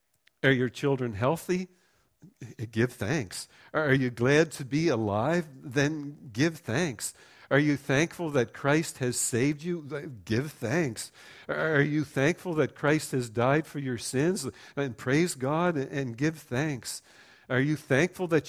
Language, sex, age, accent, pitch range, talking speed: English, male, 50-69, American, 125-155 Hz, 145 wpm